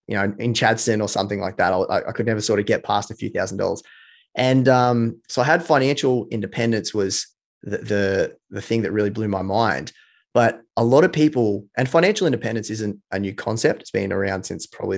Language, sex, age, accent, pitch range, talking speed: English, male, 20-39, Australian, 100-120 Hz, 215 wpm